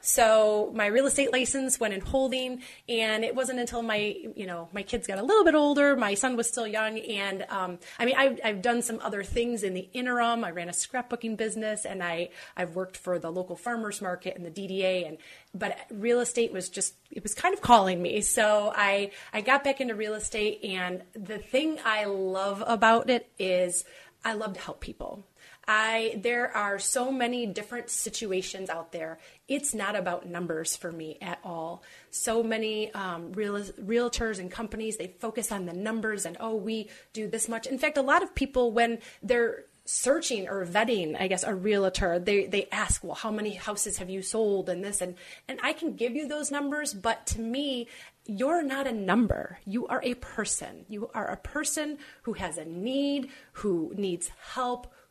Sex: female